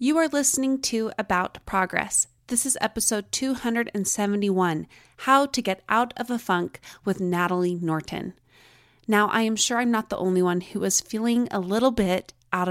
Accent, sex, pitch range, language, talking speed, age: American, female, 180-230 Hz, English, 170 wpm, 20-39